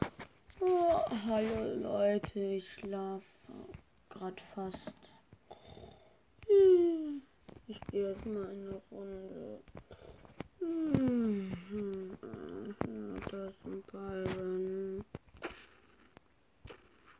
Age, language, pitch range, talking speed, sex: 20-39, German, 195-260 Hz, 65 wpm, female